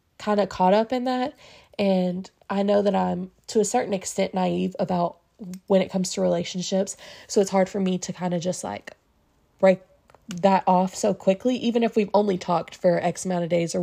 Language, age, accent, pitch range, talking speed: English, 20-39, American, 190-250 Hz, 210 wpm